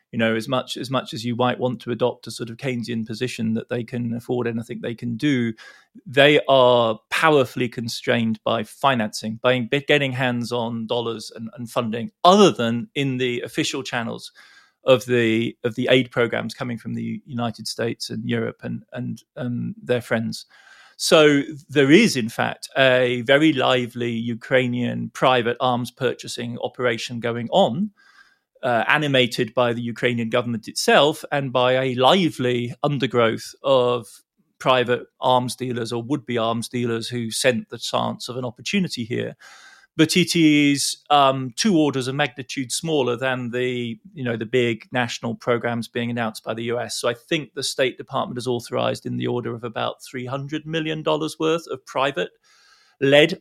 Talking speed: 165 wpm